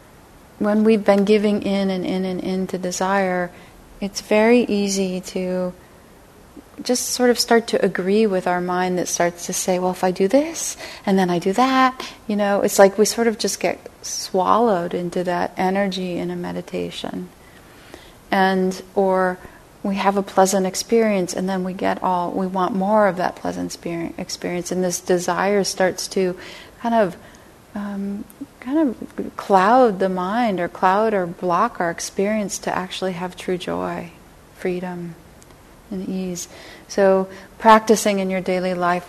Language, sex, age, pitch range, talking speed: English, female, 30-49, 180-205 Hz, 165 wpm